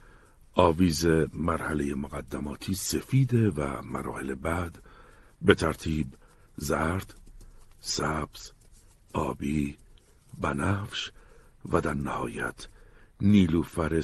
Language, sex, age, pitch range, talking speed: Persian, male, 60-79, 75-100 Hz, 75 wpm